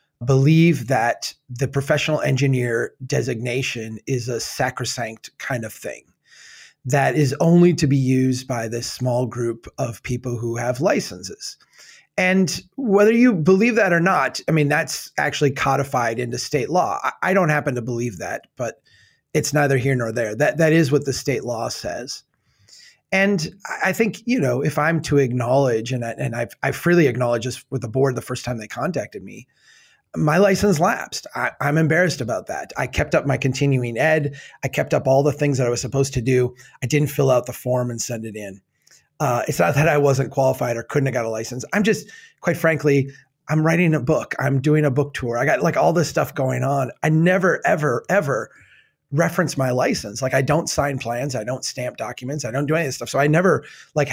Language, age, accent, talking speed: English, 30-49, American, 205 wpm